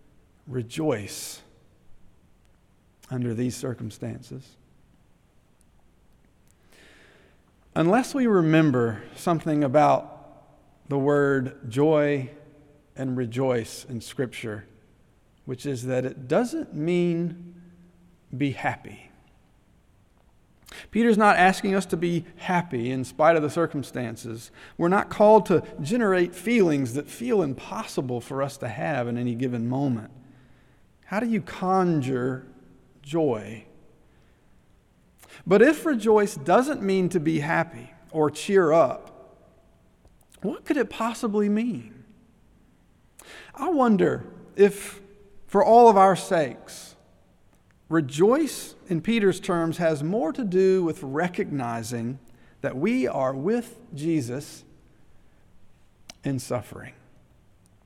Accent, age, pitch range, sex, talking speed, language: American, 50-69, 125-185 Hz, male, 105 wpm, English